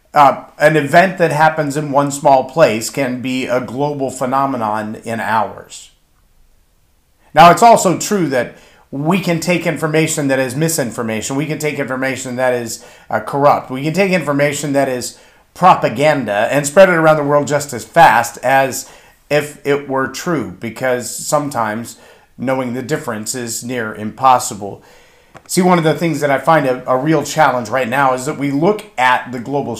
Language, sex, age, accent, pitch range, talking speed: English, male, 40-59, American, 125-155 Hz, 175 wpm